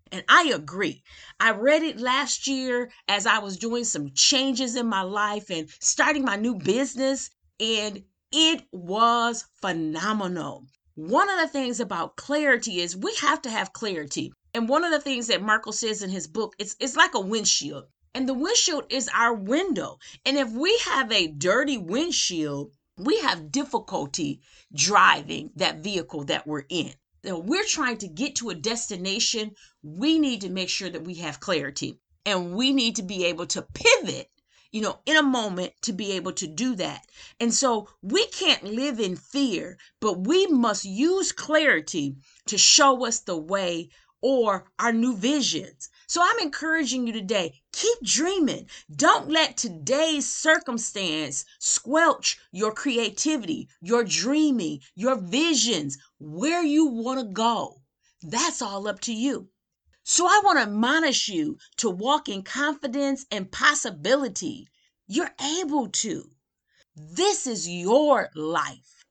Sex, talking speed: female, 160 wpm